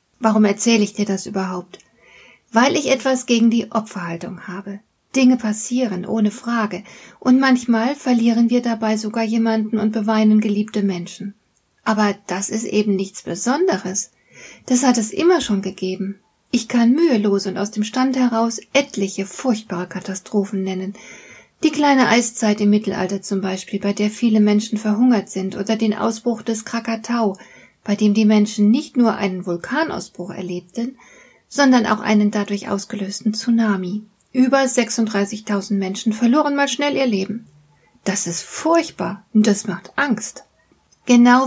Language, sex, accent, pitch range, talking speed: German, female, German, 200-240 Hz, 145 wpm